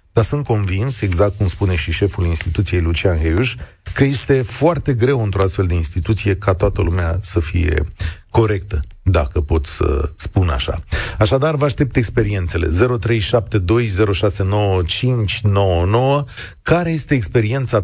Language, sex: Romanian, male